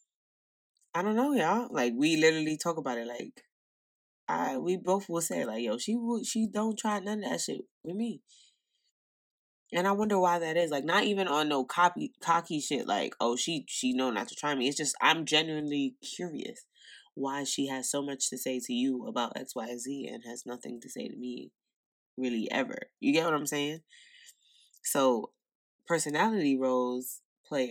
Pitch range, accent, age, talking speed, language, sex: 125-190 Hz, American, 20-39, 185 wpm, English, female